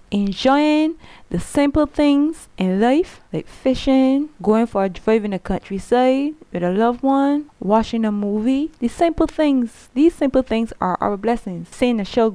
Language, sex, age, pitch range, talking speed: English, female, 20-39, 205-270 Hz, 165 wpm